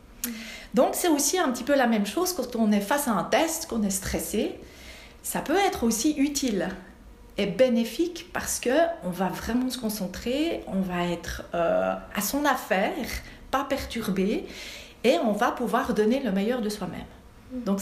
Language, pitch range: French, 205-275 Hz